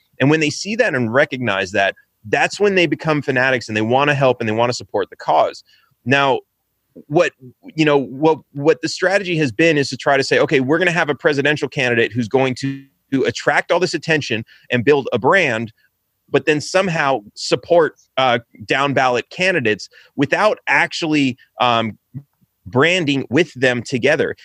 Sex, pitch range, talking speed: male, 120-155 Hz, 180 wpm